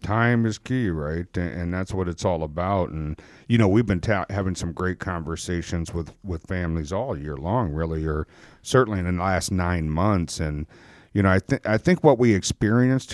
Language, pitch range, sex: English, 90-115 Hz, male